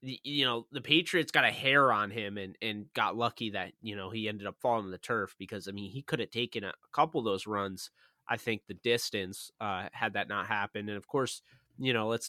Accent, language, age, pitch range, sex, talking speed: American, English, 20-39, 110-130 Hz, male, 245 wpm